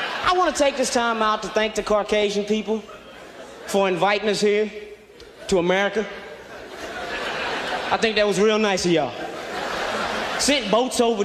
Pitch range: 215-340 Hz